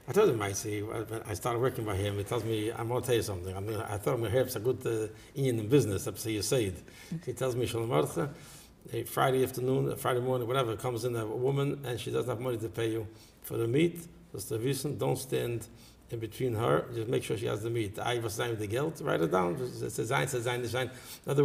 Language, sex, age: English, male, 60-79